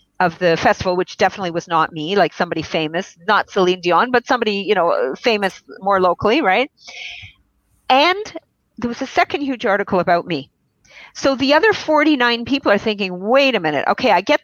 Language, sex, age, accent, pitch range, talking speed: English, female, 50-69, American, 170-230 Hz, 185 wpm